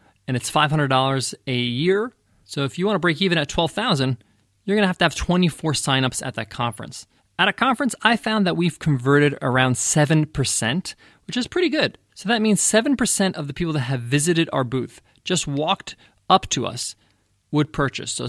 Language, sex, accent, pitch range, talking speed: English, male, American, 130-175 Hz, 195 wpm